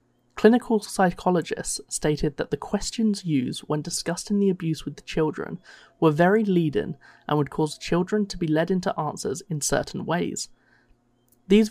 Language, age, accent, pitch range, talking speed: English, 20-39, British, 150-195 Hz, 155 wpm